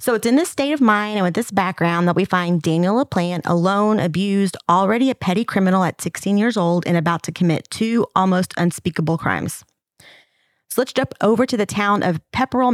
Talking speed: 200 wpm